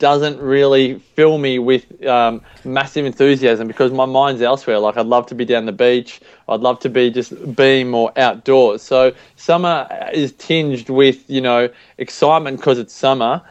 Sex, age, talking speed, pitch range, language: male, 20-39, 175 wpm, 120-140 Hz, English